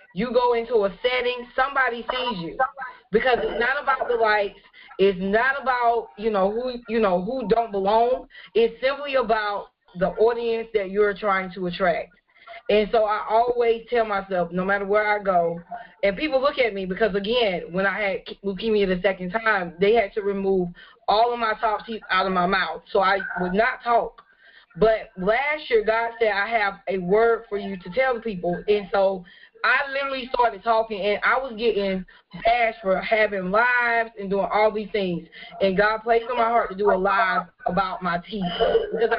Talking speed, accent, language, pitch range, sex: 195 wpm, American, English, 195-240 Hz, female